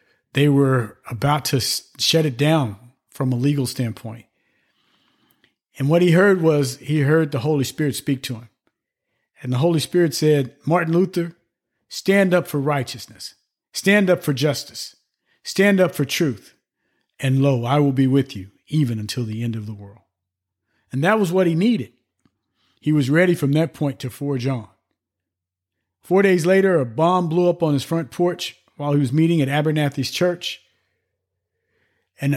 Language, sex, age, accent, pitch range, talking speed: English, male, 50-69, American, 125-165 Hz, 170 wpm